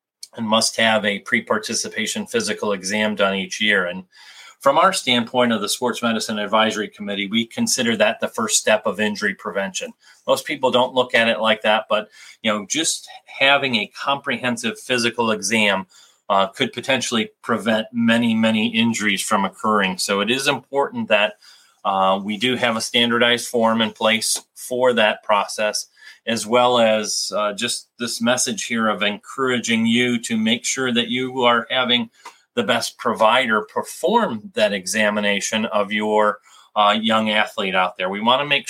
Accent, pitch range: American, 105-125 Hz